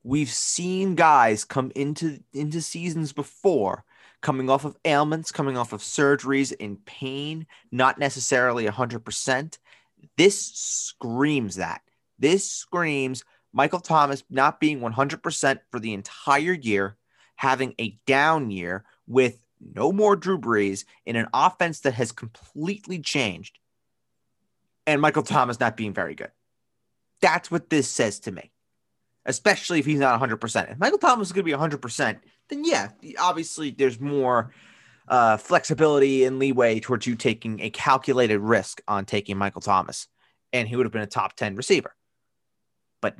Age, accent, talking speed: 30-49, American, 145 wpm